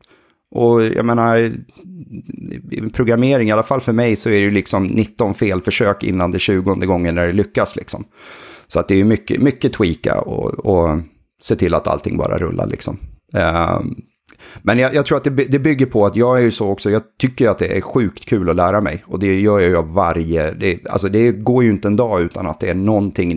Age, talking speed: 30-49, 225 wpm